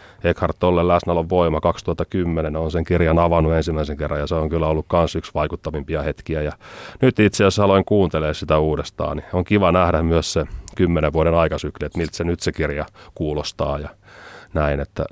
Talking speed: 185 wpm